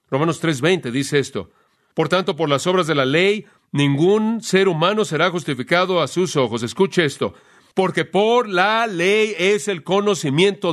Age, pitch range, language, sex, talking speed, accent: 40-59, 140-195 Hz, Spanish, male, 160 wpm, Mexican